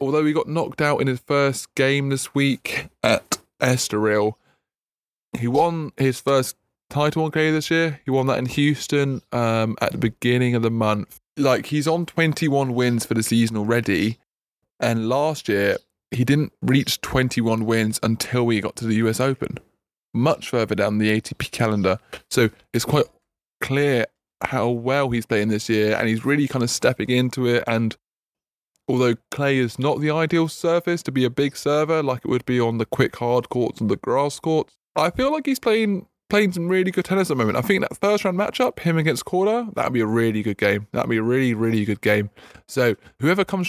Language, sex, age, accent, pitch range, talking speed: English, male, 20-39, British, 115-155 Hz, 205 wpm